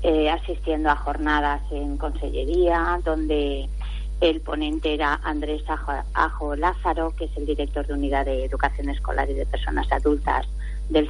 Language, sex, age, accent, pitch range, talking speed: Spanish, female, 30-49, Spanish, 145-175 Hz, 140 wpm